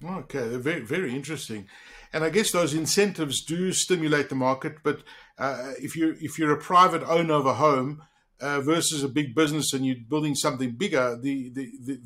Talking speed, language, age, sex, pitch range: 185 wpm, English, 60-79, male, 135-170 Hz